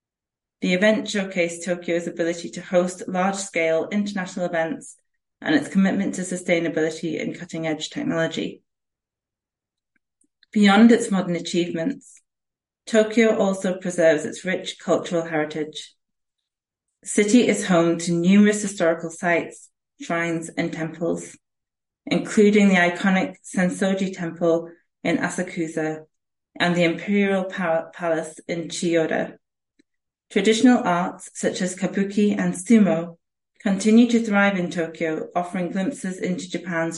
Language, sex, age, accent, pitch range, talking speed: English, female, 30-49, British, 170-205 Hz, 110 wpm